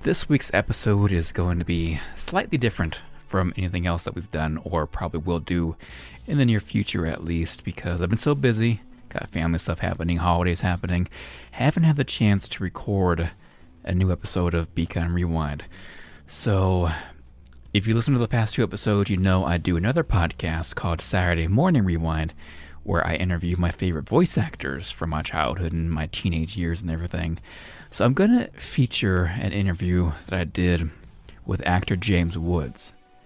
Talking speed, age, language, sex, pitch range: 175 wpm, 30-49, English, male, 85-105 Hz